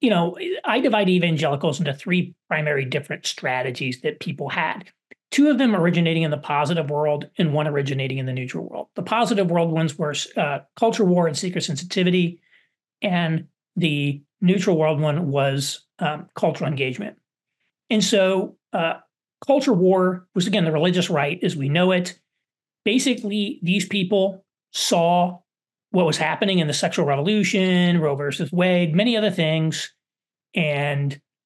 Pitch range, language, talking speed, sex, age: 150-200 Hz, English, 155 wpm, male, 40-59